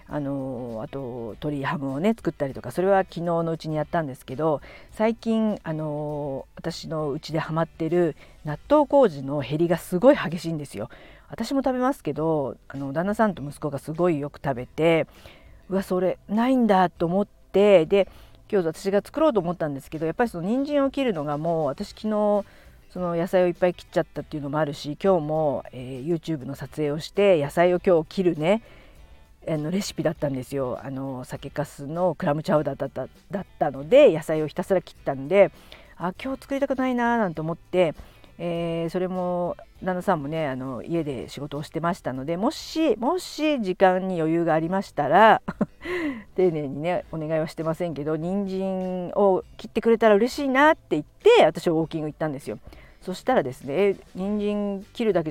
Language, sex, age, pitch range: Japanese, female, 50-69, 150-195 Hz